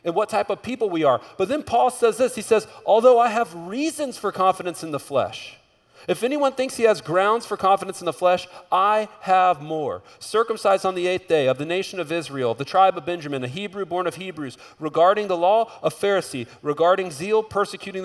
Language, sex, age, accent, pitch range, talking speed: English, male, 40-59, American, 120-190 Hz, 215 wpm